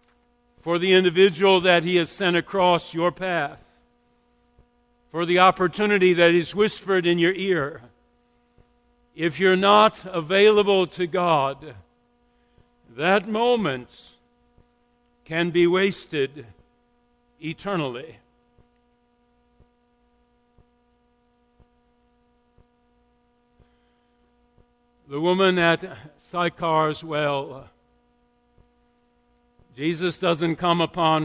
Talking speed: 75 wpm